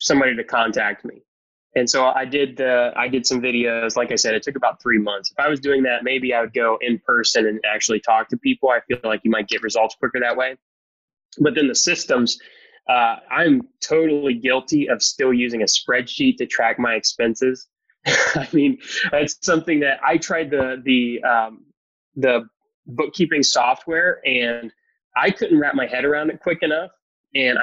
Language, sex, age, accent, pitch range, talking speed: English, male, 20-39, American, 120-150 Hz, 190 wpm